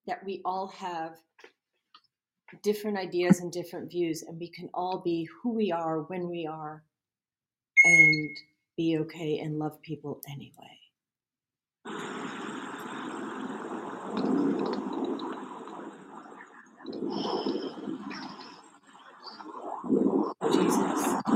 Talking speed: 80 wpm